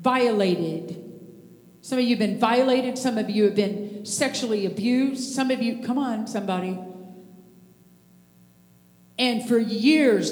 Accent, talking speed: American, 135 wpm